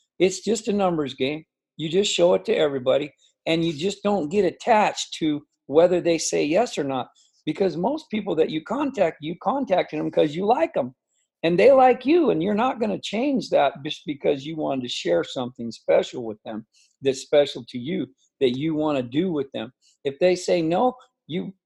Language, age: English, 50-69